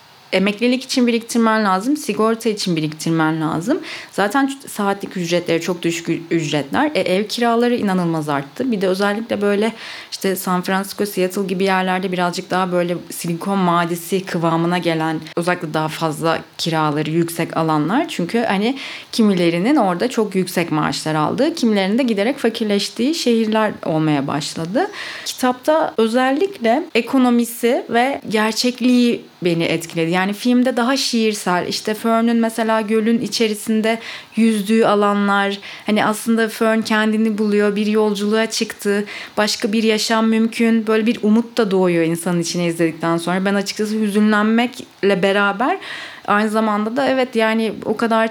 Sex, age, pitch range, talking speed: female, 30-49, 185-230 Hz, 135 wpm